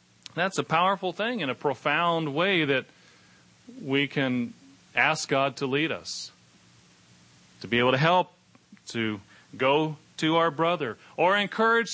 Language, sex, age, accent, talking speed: English, male, 40-59, American, 140 wpm